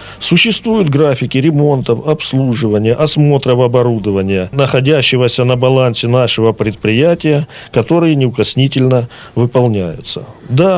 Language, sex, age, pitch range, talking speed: Russian, male, 40-59, 120-160 Hz, 85 wpm